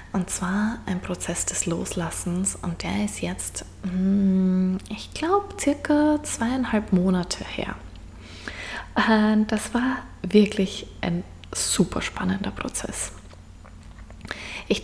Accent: German